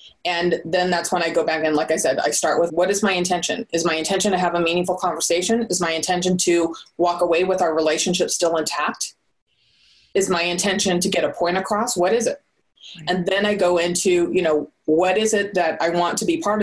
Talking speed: 230 wpm